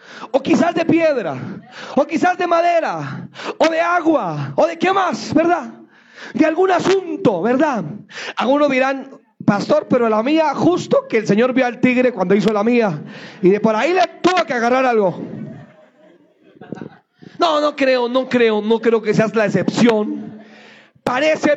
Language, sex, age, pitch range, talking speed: Spanish, male, 40-59, 225-305 Hz, 160 wpm